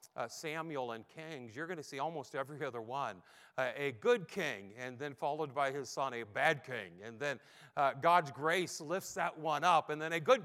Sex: male